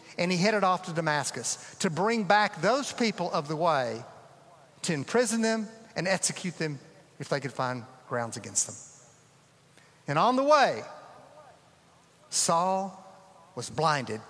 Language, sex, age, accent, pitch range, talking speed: English, male, 50-69, American, 170-240 Hz, 145 wpm